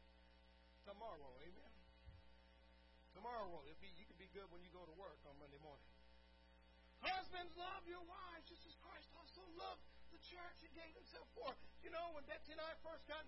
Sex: male